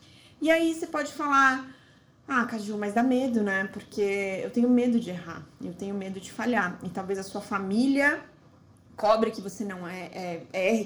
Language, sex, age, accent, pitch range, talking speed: Portuguese, female, 20-39, Brazilian, 200-260 Hz, 175 wpm